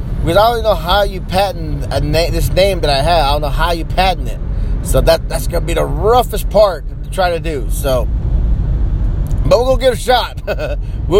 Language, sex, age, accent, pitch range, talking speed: English, male, 20-39, American, 130-215 Hz, 235 wpm